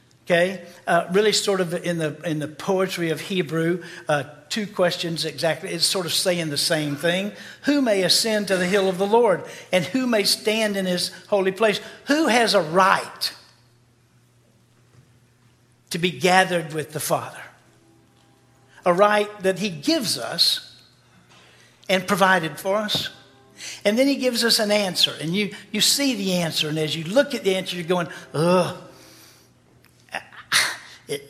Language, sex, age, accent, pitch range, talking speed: English, male, 60-79, American, 160-210 Hz, 160 wpm